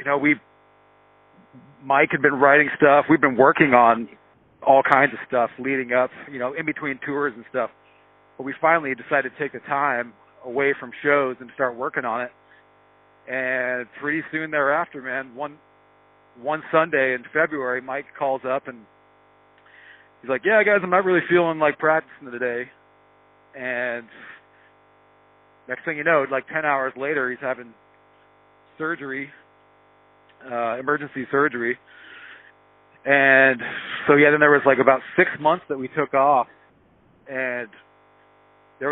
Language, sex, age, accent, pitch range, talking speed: English, male, 40-59, American, 100-140 Hz, 150 wpm